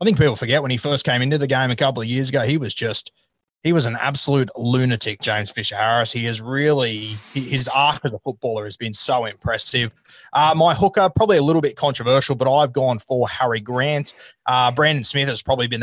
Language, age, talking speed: English, 20-39, 225 wpm